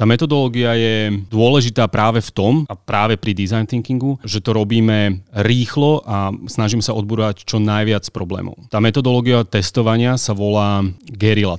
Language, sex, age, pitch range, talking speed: Slovak, male, 30-49, 100-120 Hz, 150 wpm